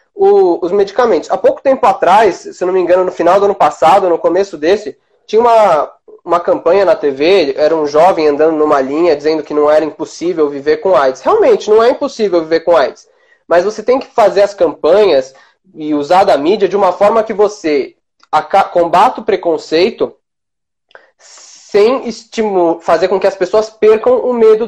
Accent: Brazilian